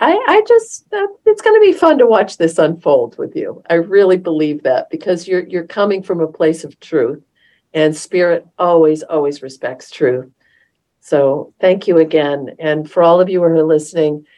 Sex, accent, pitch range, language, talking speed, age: female, American, 145-170 Hz, English, 190 wpm, 50-69